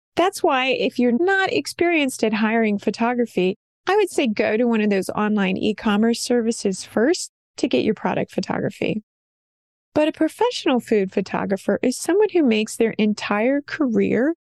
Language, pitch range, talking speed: English, 210-270 Hz, 155 wpm